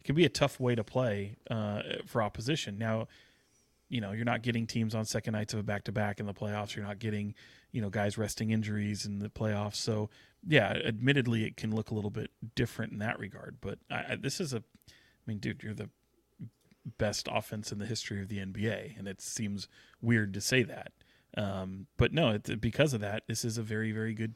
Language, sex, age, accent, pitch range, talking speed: English, male, 30-49, American, 105-120 Hz, 220 wpm